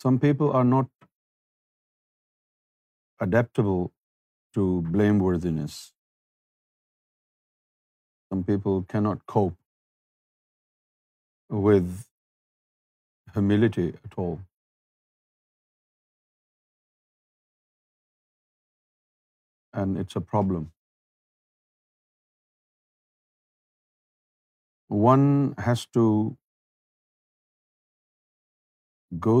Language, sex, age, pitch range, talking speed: Urdu, male, 50-69, 95-115 Hz, 45 wpm